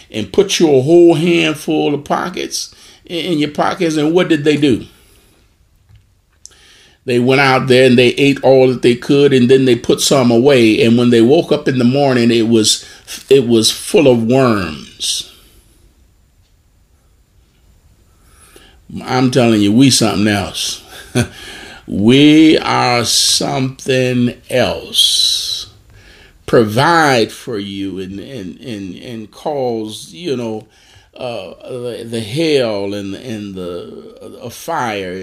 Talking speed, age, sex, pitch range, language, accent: 130 wpm, 50-69, male, 100-135 Hz, English, American